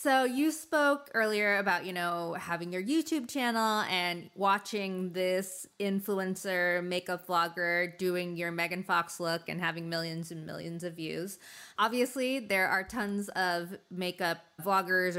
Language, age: English, 20-39